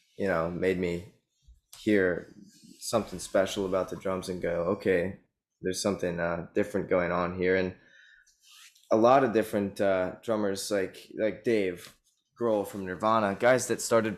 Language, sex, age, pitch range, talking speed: English, male, 20-39, 90-105 Hz, 150 wpm